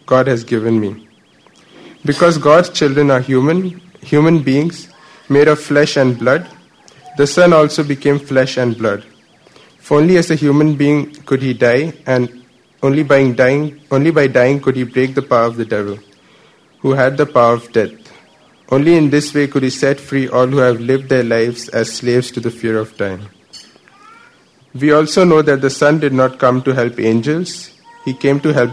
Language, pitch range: English, 125-150 Hz